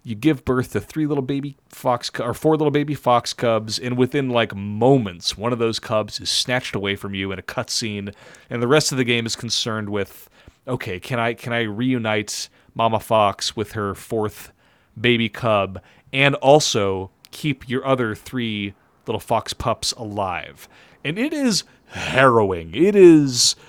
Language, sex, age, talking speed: English, male, 30-49, 175 wpm